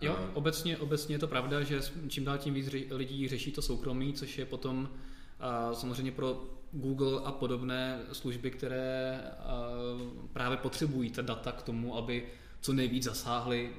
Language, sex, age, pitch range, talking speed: Czech, male, 20-39, 115-125 Hz, 150 wpm